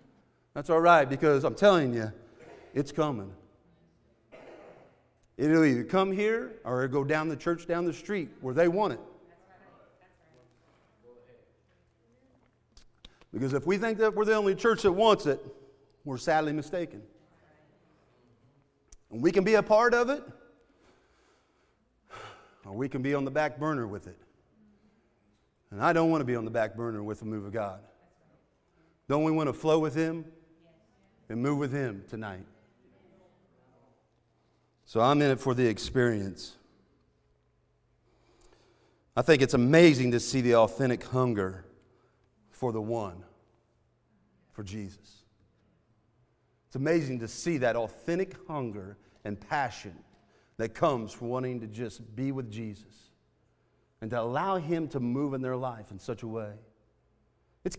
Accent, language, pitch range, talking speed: American, English, 110-160 Hz, 145 wpm